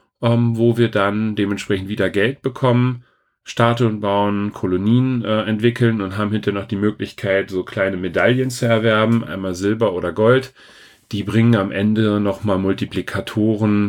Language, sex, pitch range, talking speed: German, male, 95-115 Hz, 145 wpm